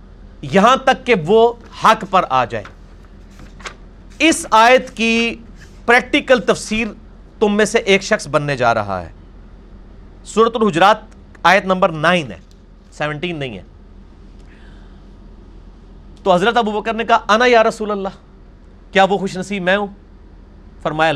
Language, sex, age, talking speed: Urdu, male, 40-59, 135 wpm